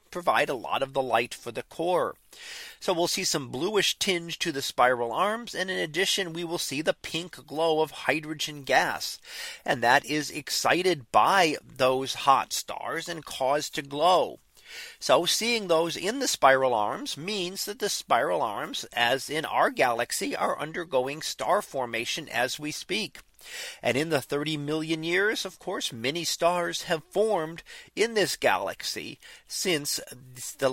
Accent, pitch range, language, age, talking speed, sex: American, 135-185 Hz, English, 40-59, 160 wpm, male